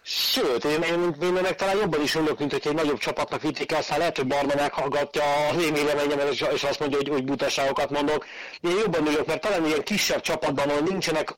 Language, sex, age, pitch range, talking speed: Hungarian, male, 40-59, 120-150 Hz, 210 wpm